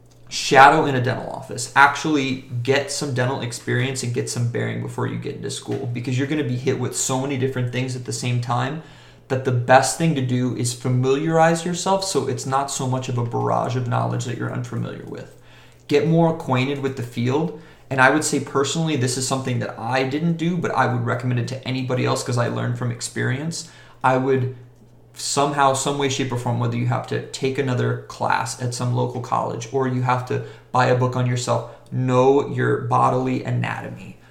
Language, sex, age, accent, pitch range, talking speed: English, male, 30-49, American, 120-135 Hz, 210 wpm